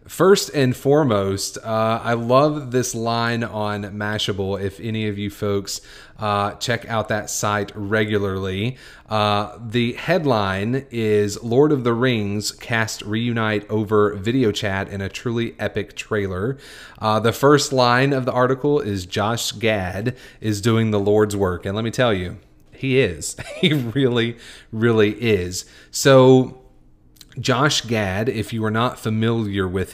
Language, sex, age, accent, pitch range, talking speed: English, male, 30-49, American, 100-125 Hz, 150 wpm